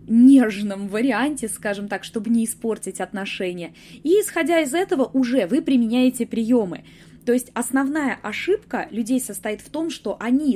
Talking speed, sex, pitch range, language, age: 150 wpm, female, 185-245 Hz, Russian, 20-39